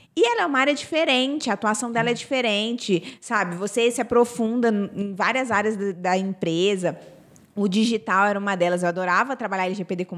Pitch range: 185-255 Hz